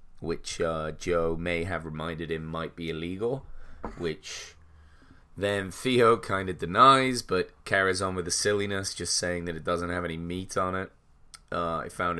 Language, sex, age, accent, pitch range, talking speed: English, male, 30-49, British, 80-100 Hz, 170 wpm